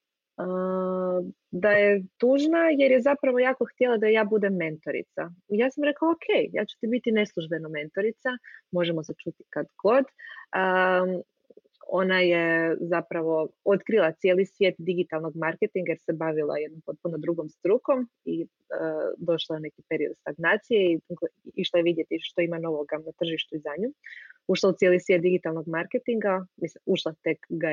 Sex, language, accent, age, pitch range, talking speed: female, Croatian, native, 30-49, 165-210 Hz, 155 wpm